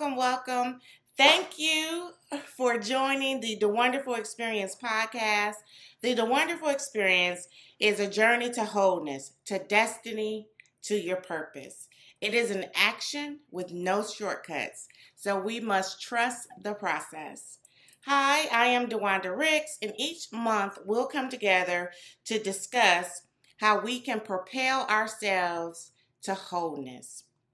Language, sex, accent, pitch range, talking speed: English, female, American, 190-250 Hz, 125 wpm